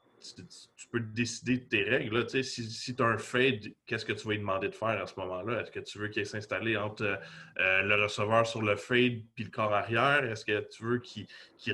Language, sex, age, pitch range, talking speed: French, male, 30-49, 105-125 Hz, 250 wpm